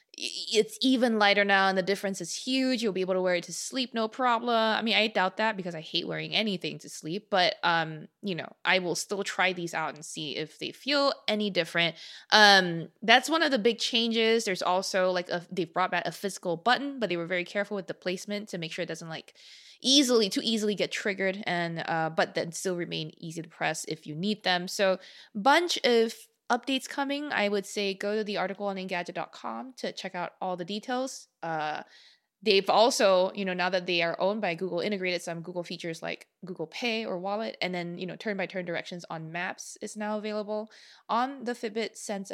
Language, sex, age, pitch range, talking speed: English, female, 20-39, 180-230 Hz, 215 wpm